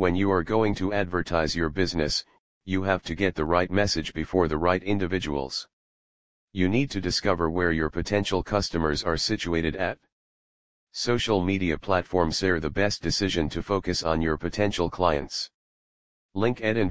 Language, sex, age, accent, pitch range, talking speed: English, male, 40-59, American, 80-100 Hz, 155 wpm